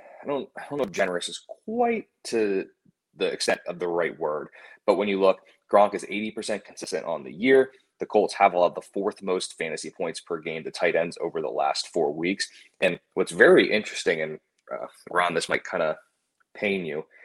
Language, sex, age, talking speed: English, male, 20-39, 200 wpm